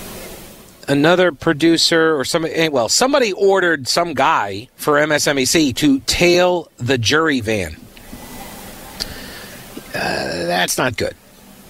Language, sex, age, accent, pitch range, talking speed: English, male, 50-69, American, 125-155 Hz, 105 wpm